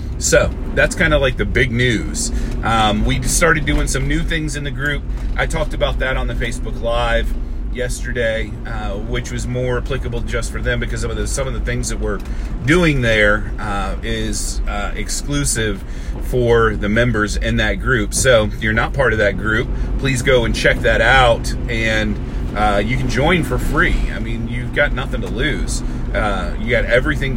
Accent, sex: American, male